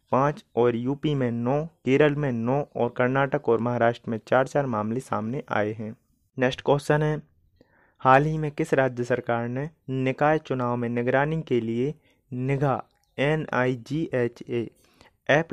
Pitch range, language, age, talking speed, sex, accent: 120-145 Hz, Hindi, 30-49, 145 wpm, male, native